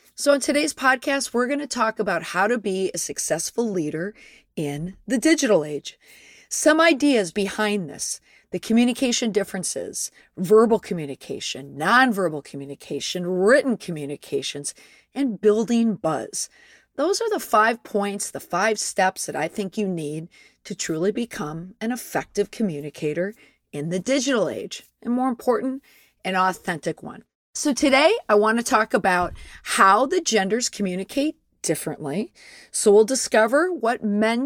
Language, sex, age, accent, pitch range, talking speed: English, female, 40-59, American, 175-250 Hz, 140 wpm